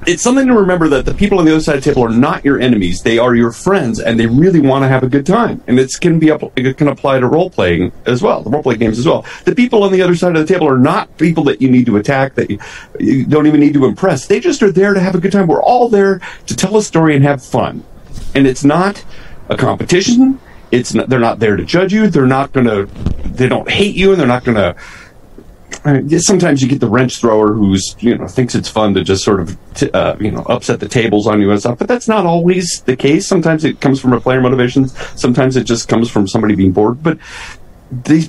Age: 40-59